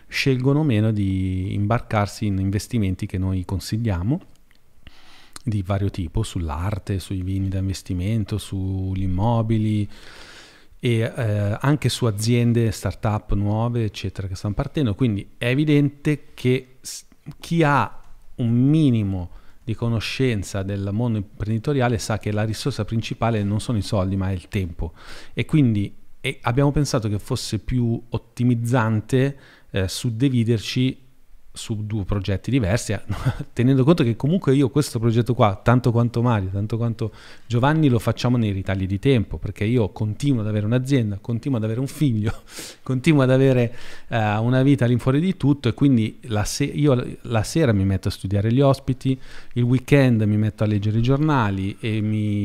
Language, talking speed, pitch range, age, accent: Italian, 155 wpm, 100-130 Hz, 40-59, native